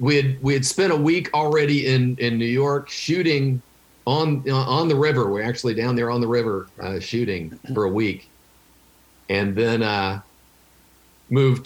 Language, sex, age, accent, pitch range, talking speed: English, male, 50-69, American, 90-120 Hz, 170 wpm